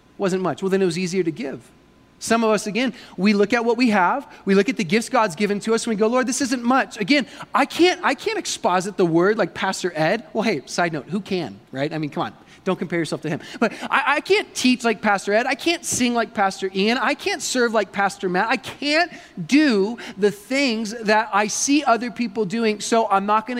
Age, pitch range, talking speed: 30-49, 180-240 Hz, 245 wpm